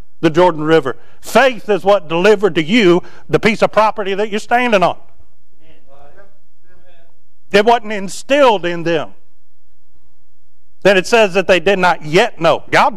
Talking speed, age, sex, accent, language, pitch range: 150 wpm, 50-69, male, American, English, 160-210 Hz